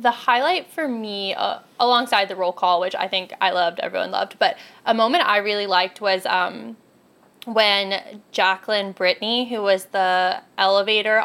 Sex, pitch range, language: female, 185-215 Hz, English